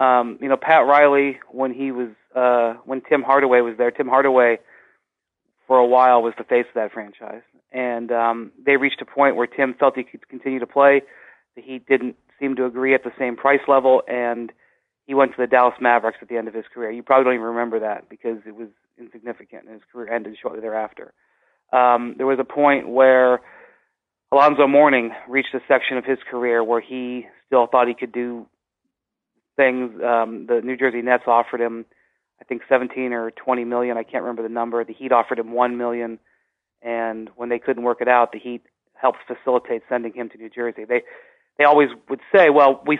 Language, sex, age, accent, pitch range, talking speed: English, male, 30-49, American, 115-130 Hz, 205 wpm